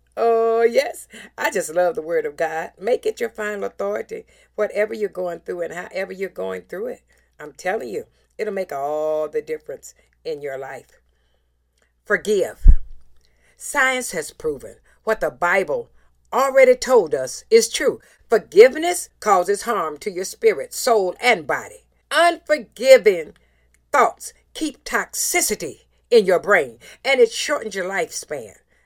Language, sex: English, female